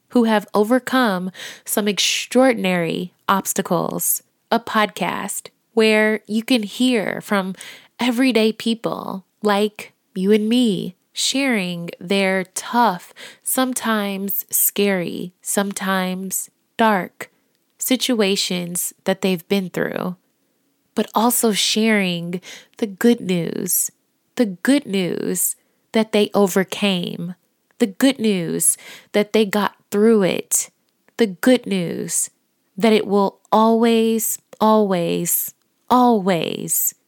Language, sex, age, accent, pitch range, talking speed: English, female, 20-39, American, 190-230 Hz, 95 wpm